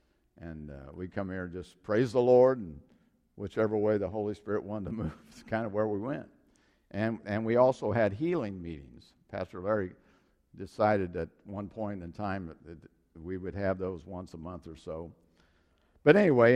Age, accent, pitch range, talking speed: 50-69, American, 90-120 Hz, 190 wpm